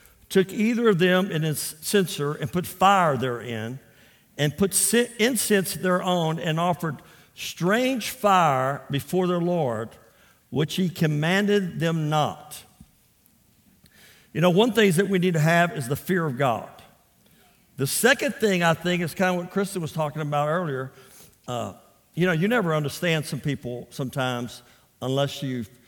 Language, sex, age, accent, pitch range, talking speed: English, male, 50-69, American, 140-180 Hz, 155 wpm